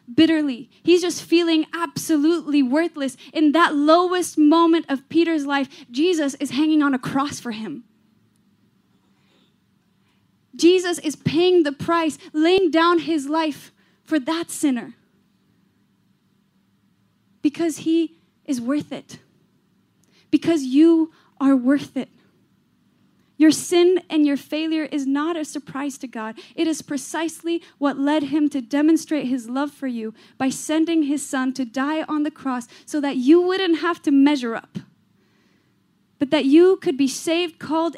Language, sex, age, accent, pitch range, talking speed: English, female, 10-29, American, 275-325 Hz, 140 wpm